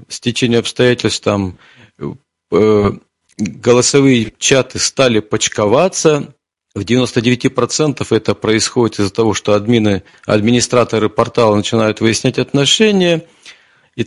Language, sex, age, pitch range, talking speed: Russian, male, 40-59, 115-145 Hz, 100 wpm